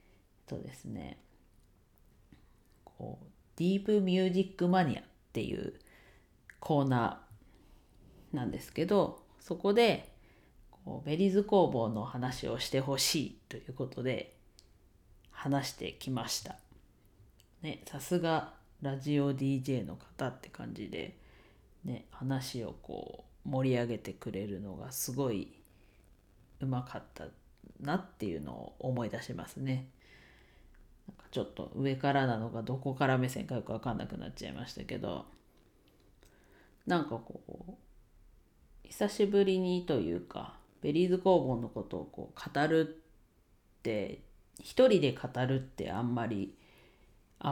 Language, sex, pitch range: Japanese, female, 115-170 Hz